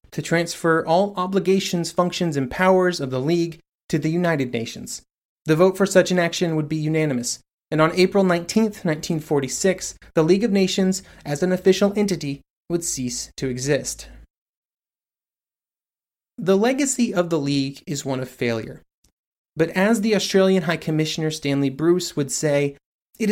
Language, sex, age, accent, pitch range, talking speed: English, male, 30-49, American, 150-190 Hz, 155 wpm